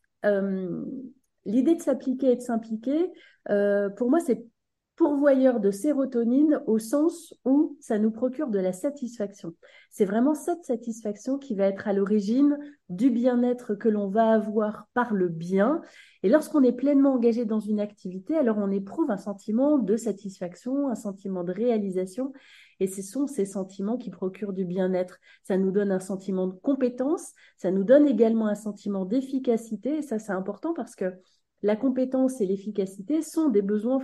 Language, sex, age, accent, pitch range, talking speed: French, female, 30-49, French, 200-270 Hz, 170 wpm